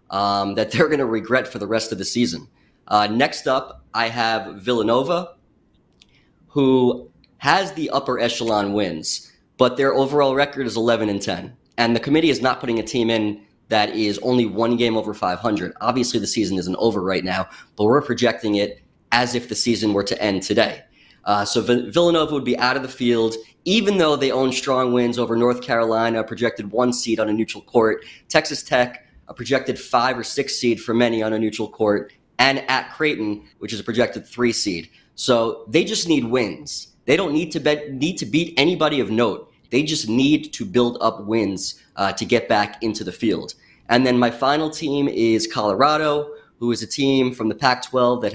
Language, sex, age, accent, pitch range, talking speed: English, male, 20-39, American, 110-140 Hz, 195 wpm